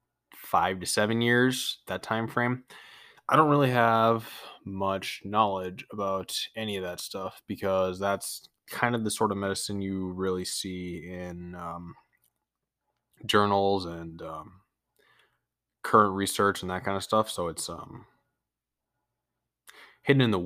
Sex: male